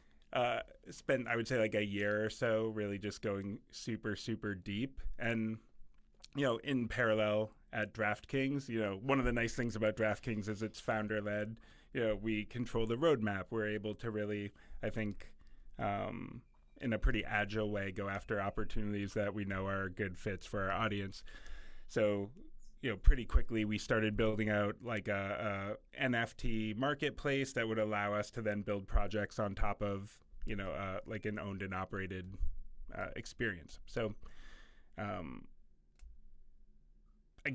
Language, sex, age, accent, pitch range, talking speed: English, male, 30-49, American, 105-120 Hz, 165 wpm